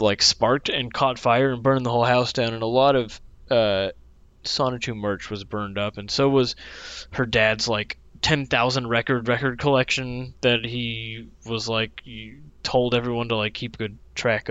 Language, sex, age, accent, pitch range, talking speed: English, male, 20-39, American, 105-135 Hz, 180 wpm